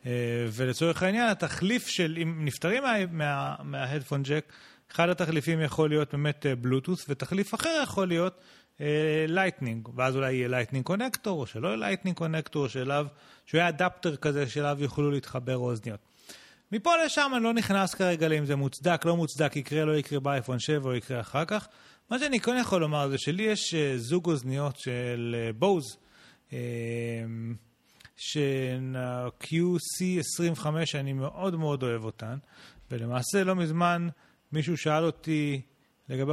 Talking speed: 150 wpm